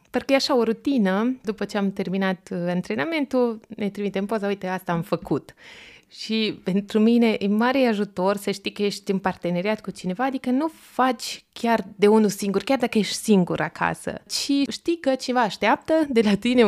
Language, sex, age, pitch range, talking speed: Romanian, female, 20-39, 190-260 Hz, 185 wpm